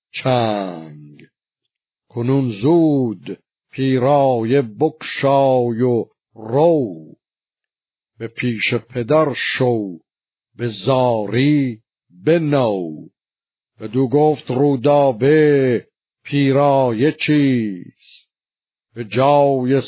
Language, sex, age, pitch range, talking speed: Persian, male, 60-79, 120-140 Hz, 70 wpm